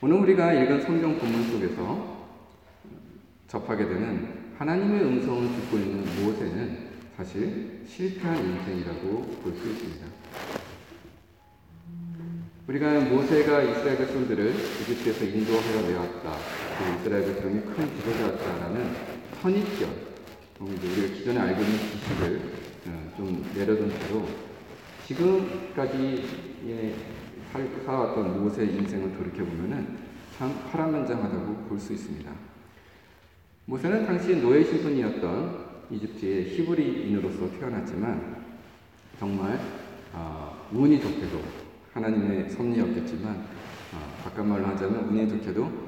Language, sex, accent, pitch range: Korean, male, native, 100-135 Hz